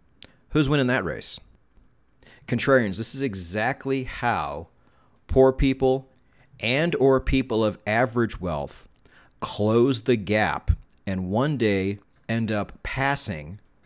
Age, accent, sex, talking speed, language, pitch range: 40-59, American, male, 115 wpm, English, 100-130 Hz